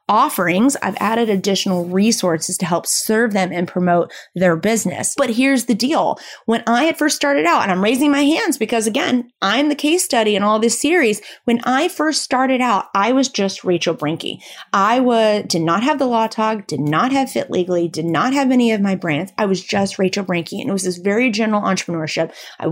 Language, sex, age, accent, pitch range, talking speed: English, female, 30-49, American, 180-250 Hz, 215 wpm